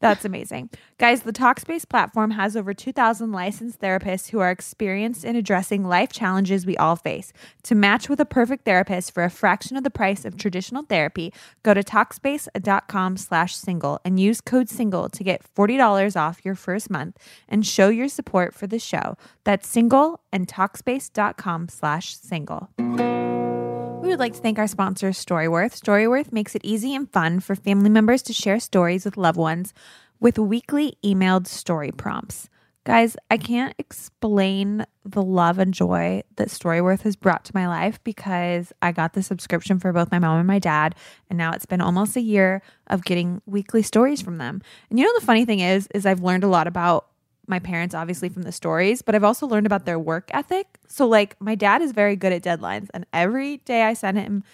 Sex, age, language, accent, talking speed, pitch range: female, 20-39, English, American, 190 wpm, 175-220 Hz